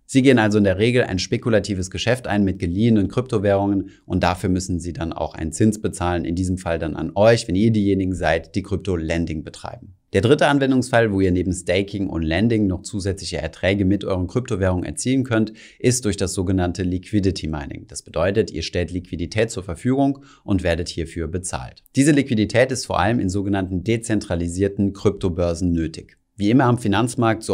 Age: 30-49